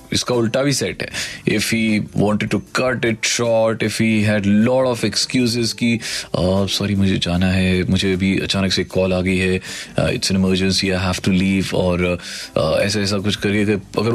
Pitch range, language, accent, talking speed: 95-125 Hz, Hindi, native, 185 wpm